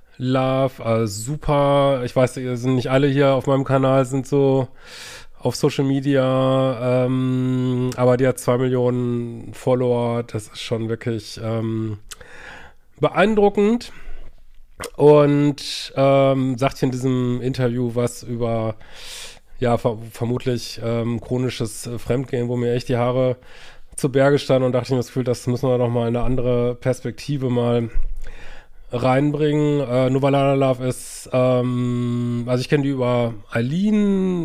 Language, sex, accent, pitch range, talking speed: German, male, German, 120-135 Hz, 140 wpm